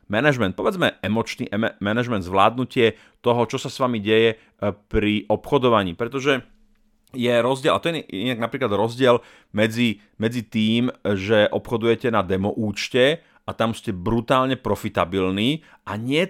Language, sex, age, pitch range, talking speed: Slovak, male, 40-59, 105-125 Hz, 135 wpm